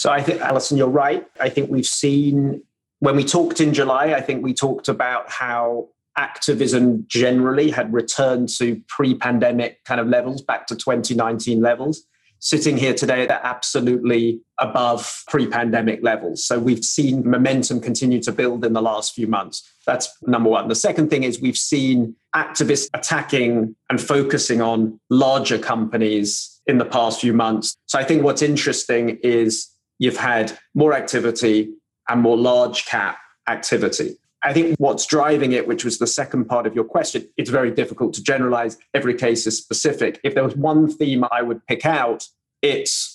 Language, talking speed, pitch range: English, 170 wpm, 115-140 Hz